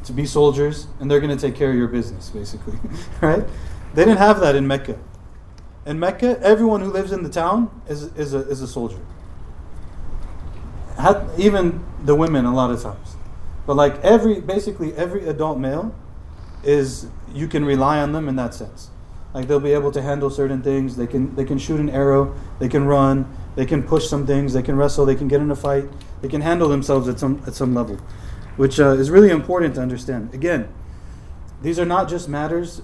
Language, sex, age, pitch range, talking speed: English, male, 30-49, 115-150 Hz, 205 wpm